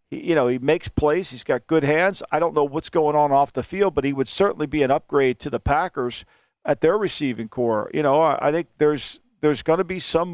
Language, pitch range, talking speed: English, 140-185 Hz, 245 wpm